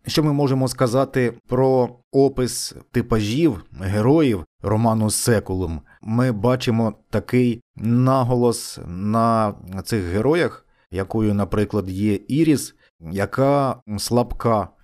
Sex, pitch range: male, 105-130 Hz